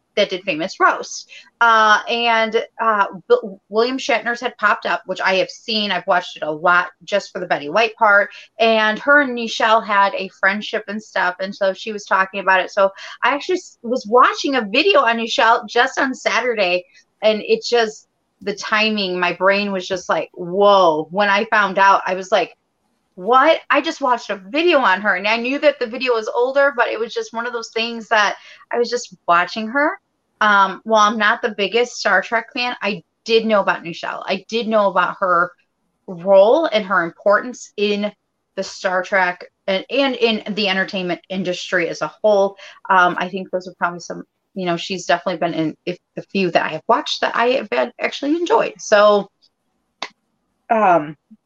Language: English